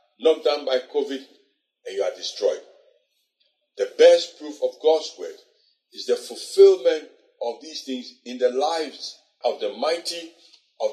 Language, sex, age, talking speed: English, male, 50-69, 150 wpm